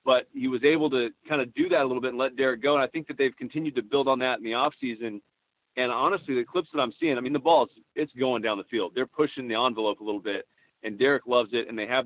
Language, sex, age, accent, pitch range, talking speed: English, male, 40-59, American, 120-150 Hz, 300 wpm